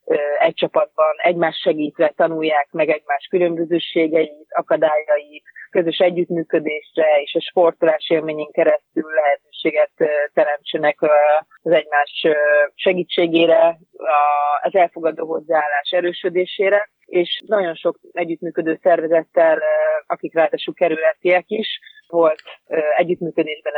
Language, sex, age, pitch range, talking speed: Hungarian, female, 30-49, 155-175 Hz, 95 wpm